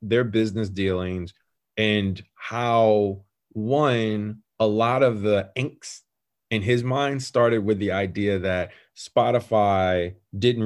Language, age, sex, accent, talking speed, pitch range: English, 30-49, male, American, 120 wpm, 100-120 Hz